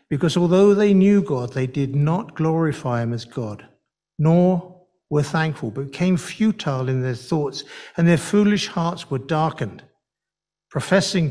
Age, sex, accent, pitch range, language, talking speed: 60-79, male, British, 130-175 Hz, English, 150 wpm